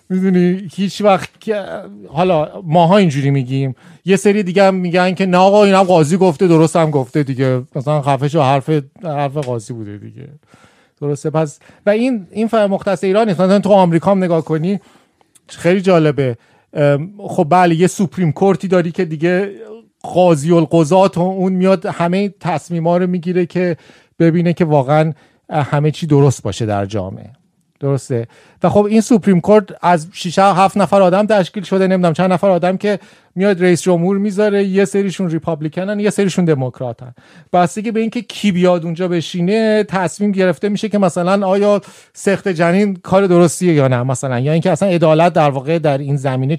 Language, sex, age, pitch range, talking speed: Persian, male, 40-59, 150-195 Hz, 165 wpm